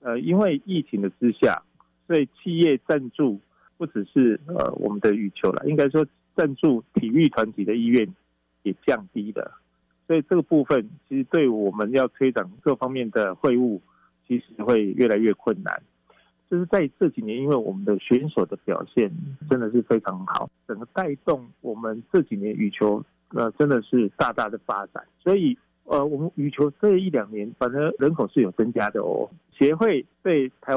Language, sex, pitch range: Chinese, male, 110-150 Hz